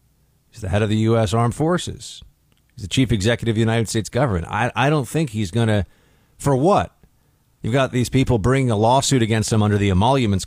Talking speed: 220 wpm